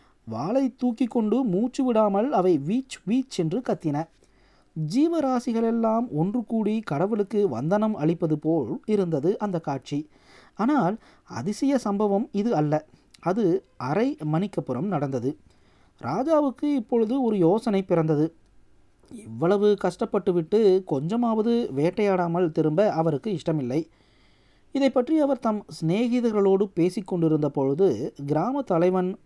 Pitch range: 150-220 Hz